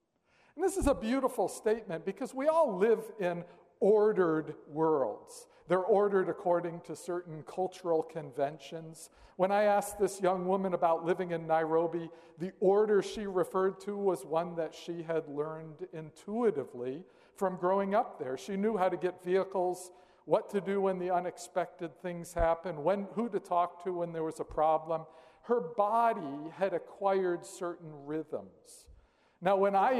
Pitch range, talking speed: 160-200 Hz, 155 wpm